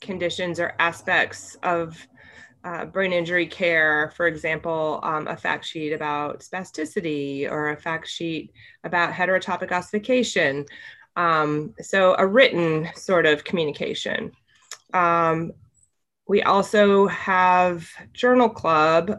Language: English